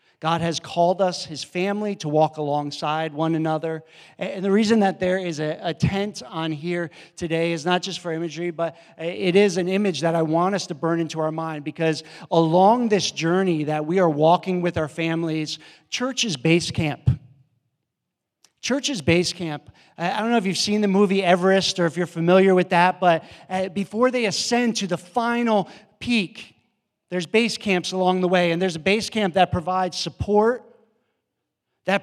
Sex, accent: male, American